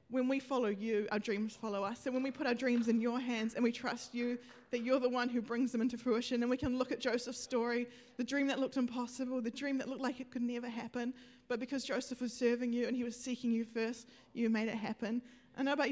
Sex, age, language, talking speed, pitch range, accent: female, 20-39, English, 265 wpm, 235-260 Hz, Australian